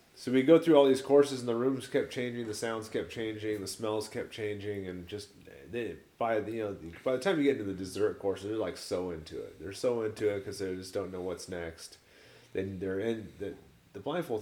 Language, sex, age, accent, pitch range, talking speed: English, male, 30-49, American, 90-115 Hz, 240 wpm